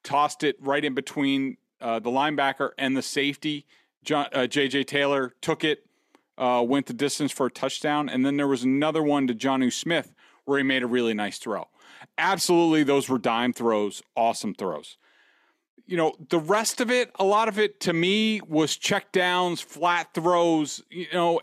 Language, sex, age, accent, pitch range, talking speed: English, male, 40-59, American, 140-175 Hz, 185 wpm